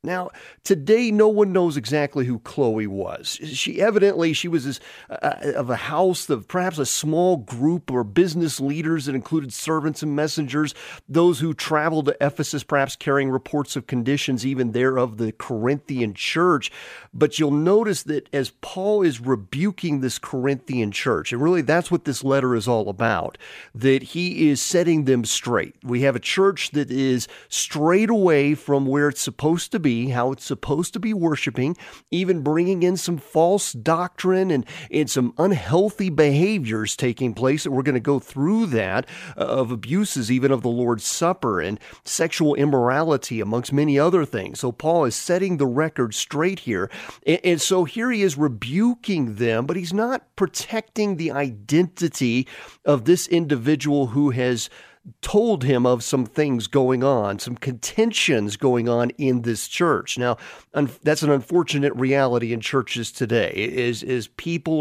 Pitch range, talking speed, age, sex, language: 125-170 Hz, 165 wpm, 40-59, male, English